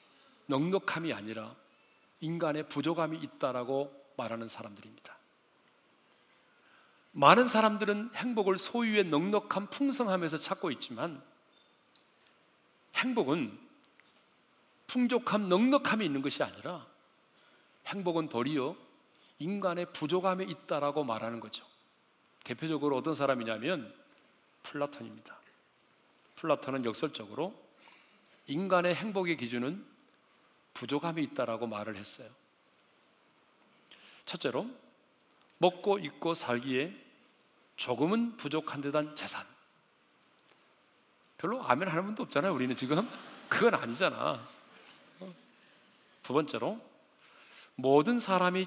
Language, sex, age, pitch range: Korean, male, 40-59, 135-200 Hz